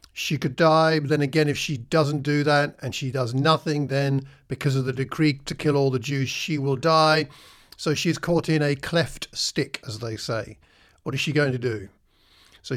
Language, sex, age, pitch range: English, male, 50-69, 115-155 Hz